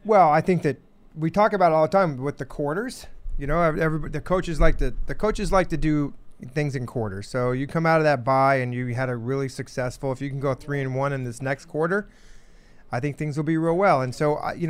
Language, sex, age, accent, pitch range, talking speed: English, male, 30-49, American, 130-165 Hz, 255 wpm